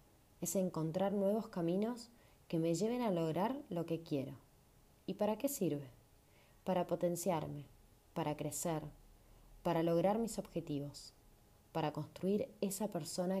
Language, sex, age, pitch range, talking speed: Spanish, female, 20-39, 145-195 Hz, 125 wpm